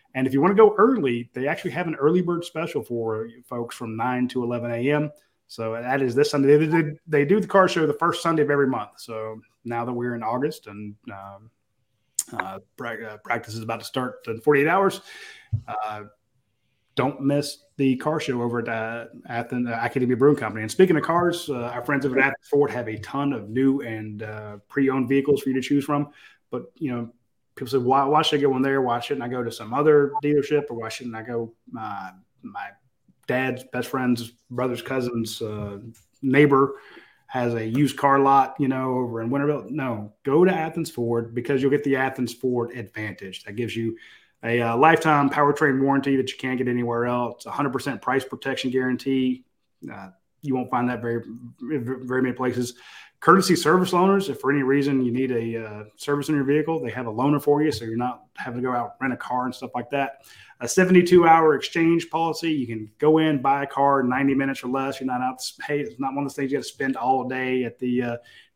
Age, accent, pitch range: 30-49, American, 120-145 Hz